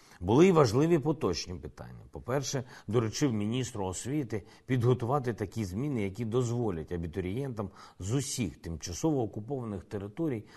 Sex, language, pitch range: male, Ukrainian, 105-140 Hz